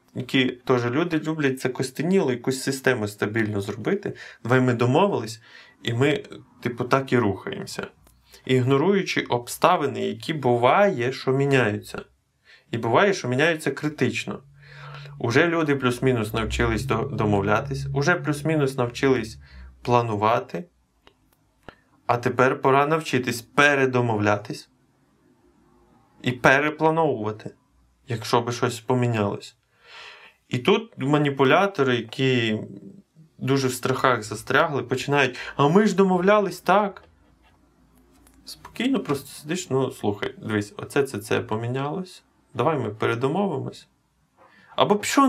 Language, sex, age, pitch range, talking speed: Ukrainian, male, 20-39, 120-160 Hz, 105 wpm